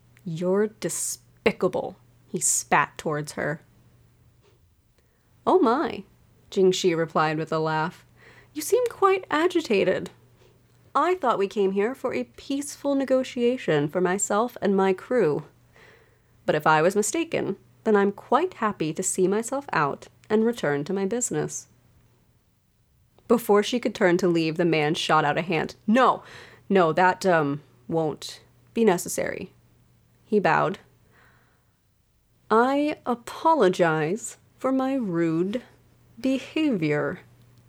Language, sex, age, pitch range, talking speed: English, female, 30-49, 155-240 Hz, 120 wpm